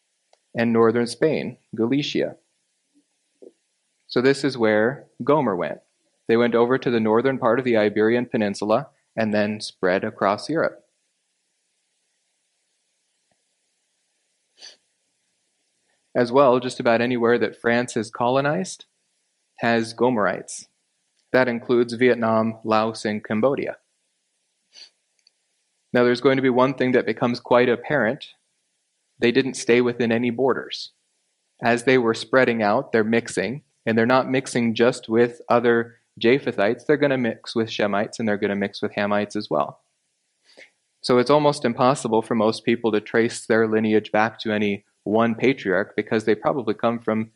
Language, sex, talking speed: English, male, 140 wpm